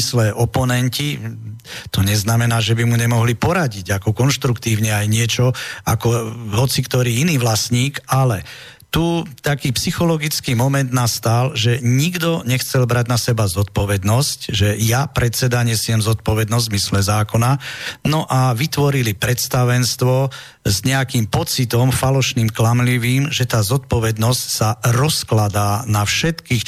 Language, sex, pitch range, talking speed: Slovak, male, 115-135 Hz, 125 wpm